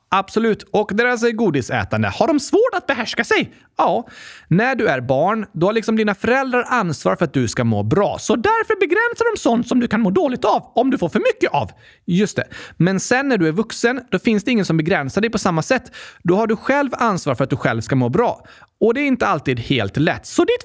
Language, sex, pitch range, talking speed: Swedish, male, 160-265 Hz, 245 wpm